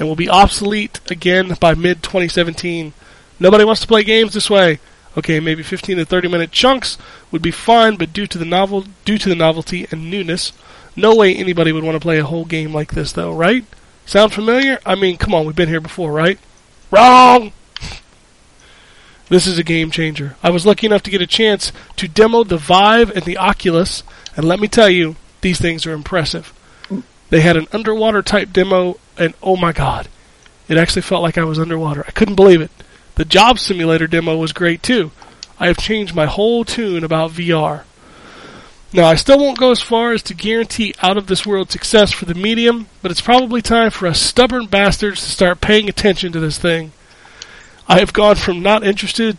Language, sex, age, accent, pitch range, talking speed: English, male, 30-49, American, 165-210 Hz, 190 wpm